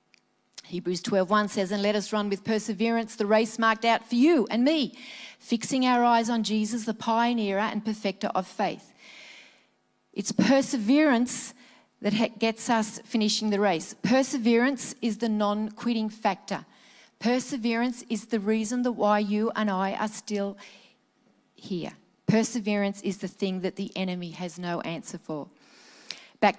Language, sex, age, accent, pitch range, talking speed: English, female, 40-59, Australian, 190-235 Hz, 145 wpm